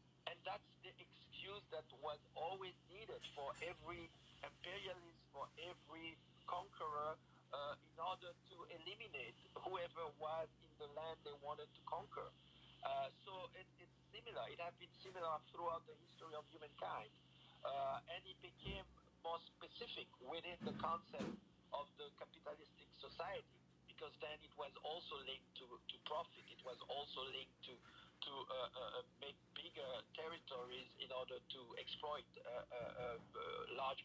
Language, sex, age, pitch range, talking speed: English, male, 50-69, 140-175 Hz, 145 wpm